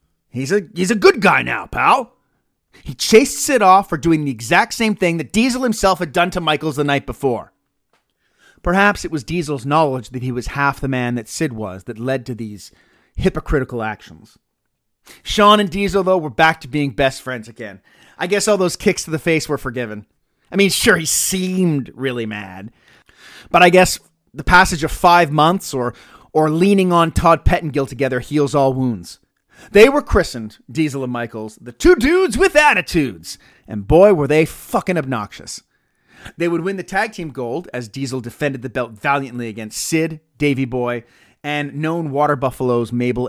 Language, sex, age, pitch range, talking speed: English, male, 30-49, 120-180 Hz, 185 wpm